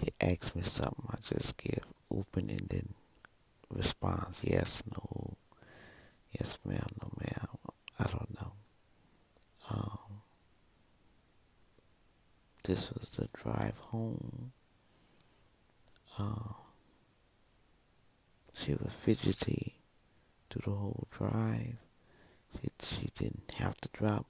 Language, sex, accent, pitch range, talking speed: English, male, American, 100-120 Hz, 100 wpm